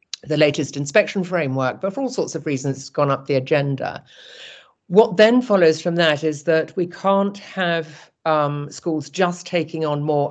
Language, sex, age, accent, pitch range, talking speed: English, female, 50-69, British, 140-180 Hz, 180 wpm